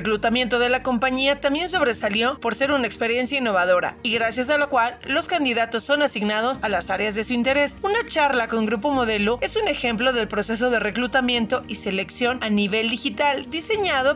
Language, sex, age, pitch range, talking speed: Spanish, female, 40-59, 230-285 Hz, 185 wpm